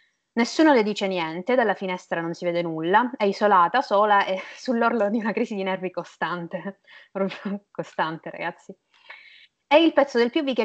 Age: 20-39